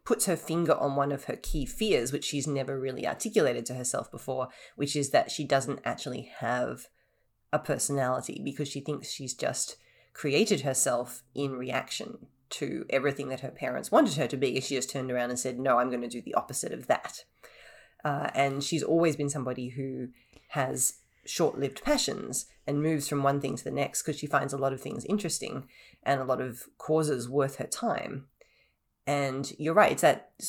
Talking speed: 195 wpm